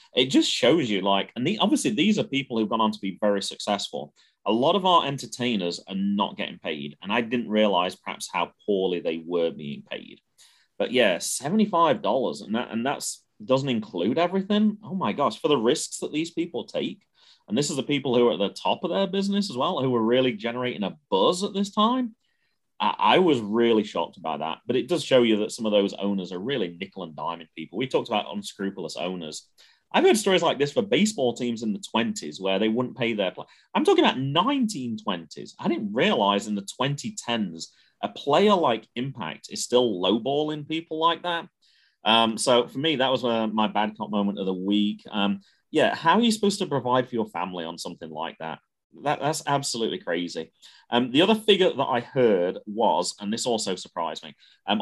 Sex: male